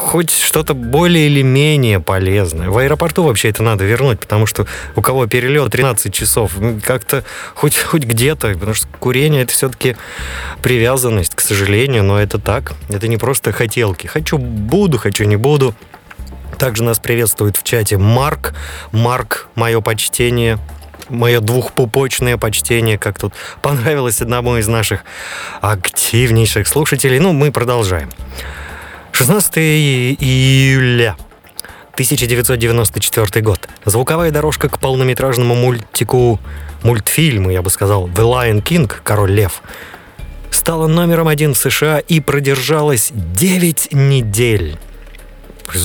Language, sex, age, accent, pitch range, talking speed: Russian, male, 20-39, native, 105-135 Hz, 120 wpm